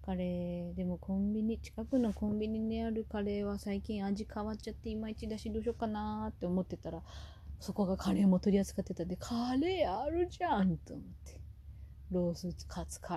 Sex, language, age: female, Japanese, 20-39